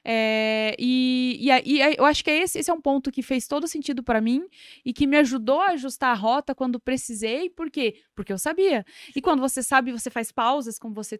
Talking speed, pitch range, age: 220 wpm, 240-295 Hz, 20-39